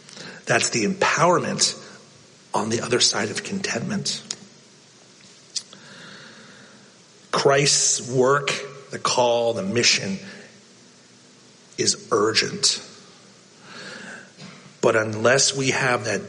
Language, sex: English, male